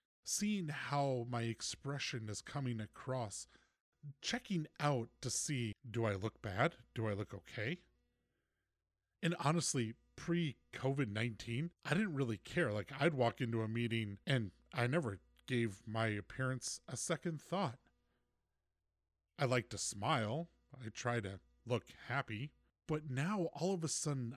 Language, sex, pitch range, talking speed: English, male, 100-140 Hz, 140 wpm